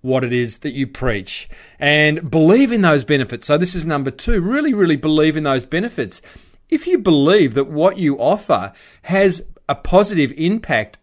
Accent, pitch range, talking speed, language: Australian, 135-180 Hz, 180 wpm, English